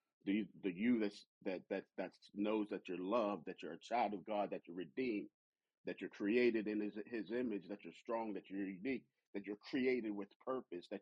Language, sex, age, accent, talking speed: English, male, 40-59, American, 200 wpm